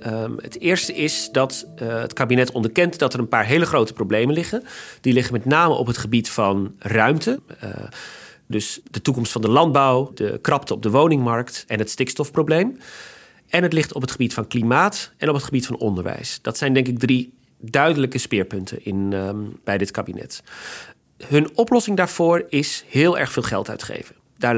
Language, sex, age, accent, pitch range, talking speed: Dutch, male, 40-59, Dutch, 110-145 Hz, 180 wpm